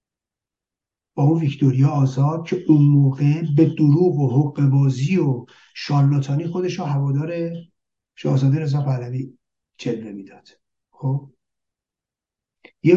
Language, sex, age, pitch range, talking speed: Persian, male, 50-69, 135-170 Hz, 105 wpm